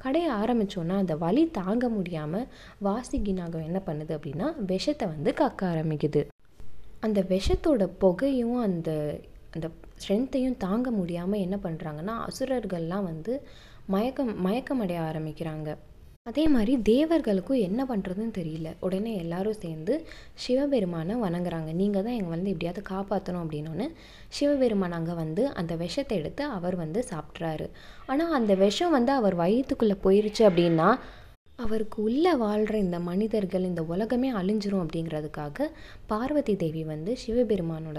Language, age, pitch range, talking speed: Hindi, 20-39, 170-245 Hz, 75 wpm